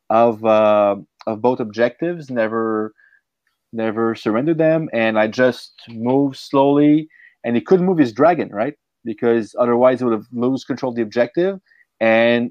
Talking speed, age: 155 wpm, 30-49